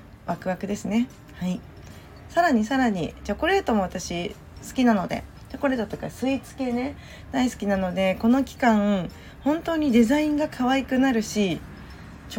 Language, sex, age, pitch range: Japanese, female, 20-39, 185-250 Hz